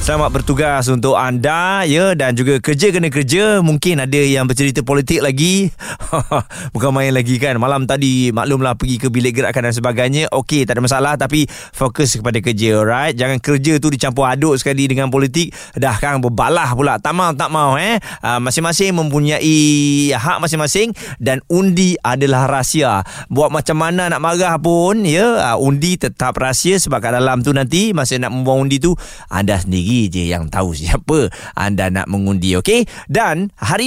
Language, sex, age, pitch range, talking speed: Malay, male, 20-39, 125-170 Hz, 170 wpm